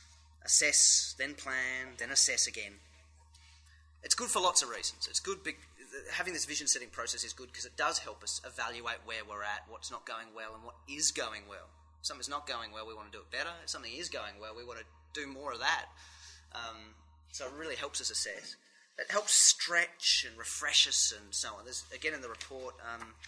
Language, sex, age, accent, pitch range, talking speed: English, male, 30-49, Australian, 80-120 Hz, 220 wpm